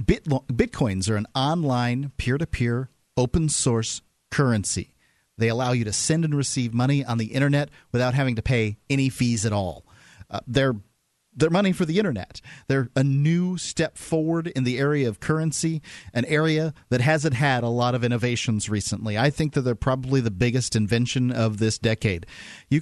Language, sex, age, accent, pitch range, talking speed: English, male, 40-59, American, 115-140 Hz, 175 wpm